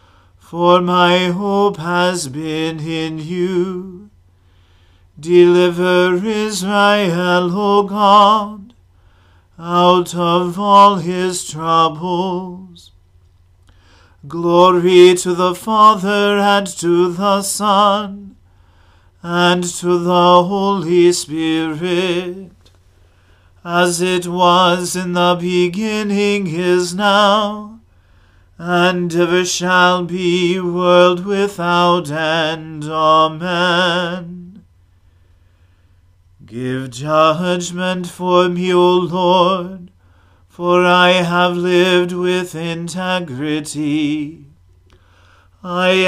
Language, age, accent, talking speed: English, 40-59, American, 75 wpm